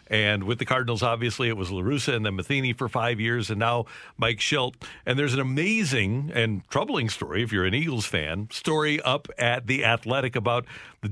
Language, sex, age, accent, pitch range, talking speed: English, male, 50-69, American, 110-140 Hz, 200 wpm